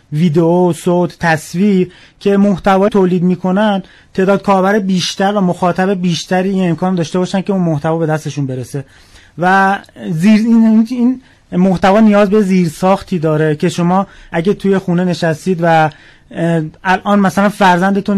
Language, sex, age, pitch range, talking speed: Persian, male, 30-49, 170-200 Hz, 140 wpm